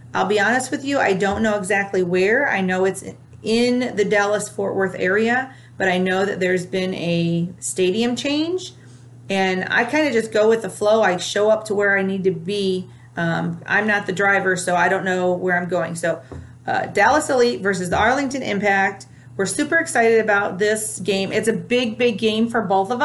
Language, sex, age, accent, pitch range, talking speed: English, female, 40-59, American, 180-220 Hz, 205 wpm